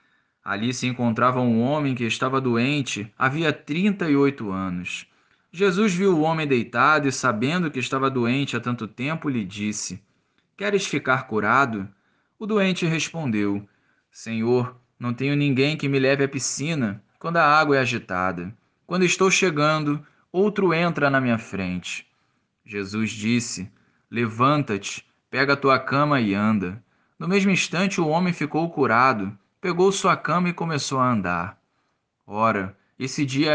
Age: 20-39